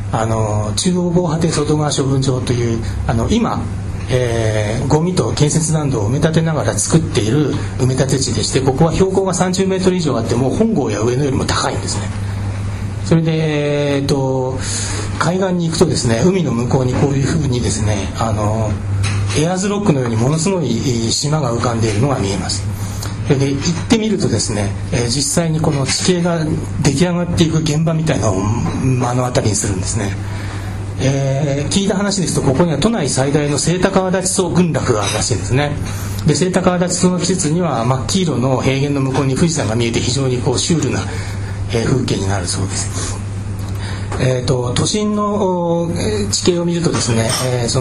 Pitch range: 105-160 Hz